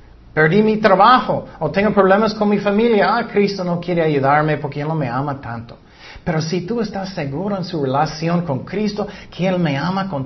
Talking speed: 205 wpm